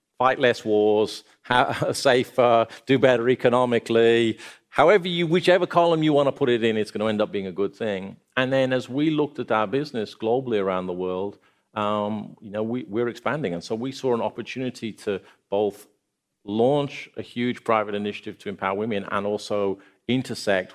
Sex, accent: male, British